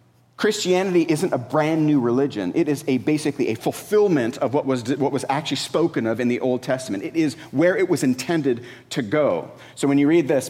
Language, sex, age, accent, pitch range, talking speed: English, male, 40-59, American, 120-165 Hz, 210 wpm